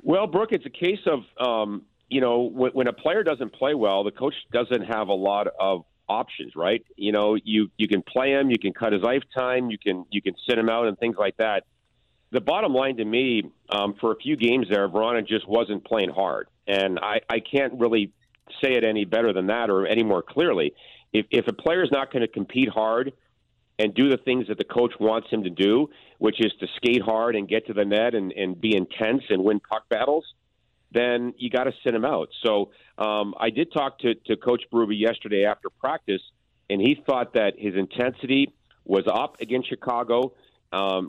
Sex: male